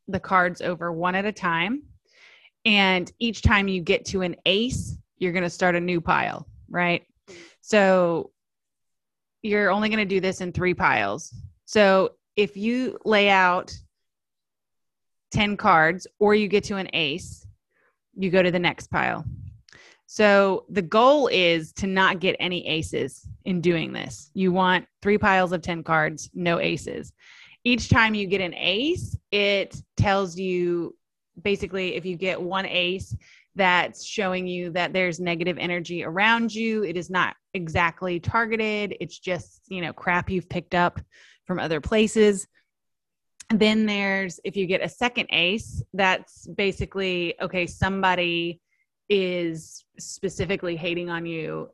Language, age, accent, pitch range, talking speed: English, 20-39, American, 175-200 Hz, 150 wpm